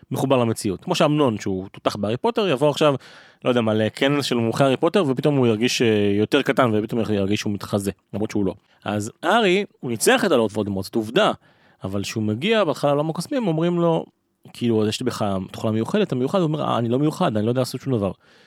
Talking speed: 220 wpm